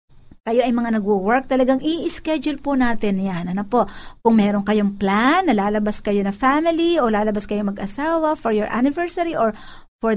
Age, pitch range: 50-69, 220-305 Hz